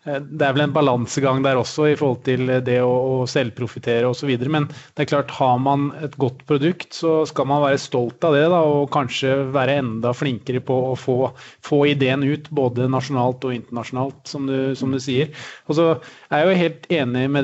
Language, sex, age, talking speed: English, male, 30-49, 215 wpm